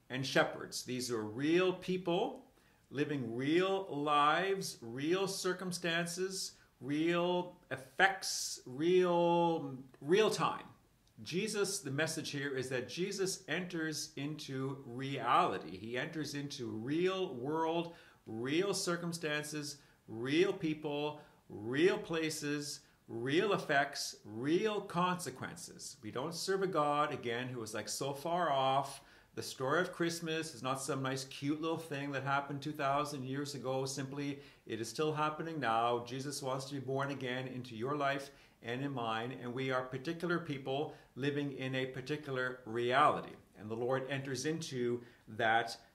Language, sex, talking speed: English, male, 135 wpm